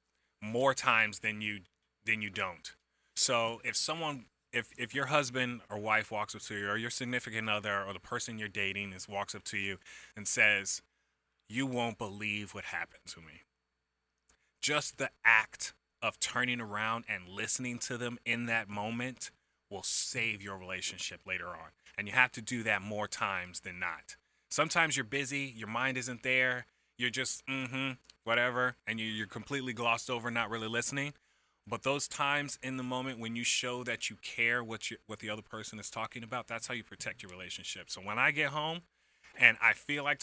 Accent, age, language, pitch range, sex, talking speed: American, 20-39, English, 105-130 Hz, male, 190 wpm